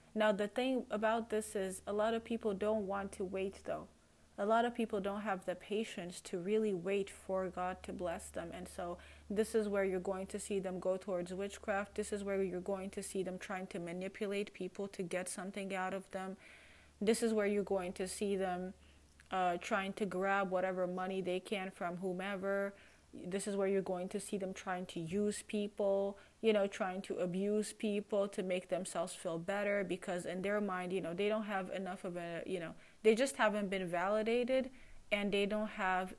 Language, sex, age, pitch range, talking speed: English, female, 30-49, 185-210 Hz, 210 wpm